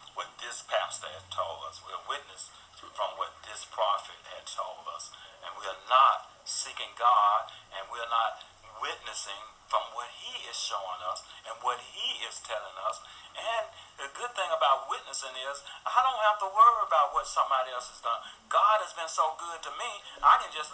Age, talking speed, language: 40-59, 195 wpm, English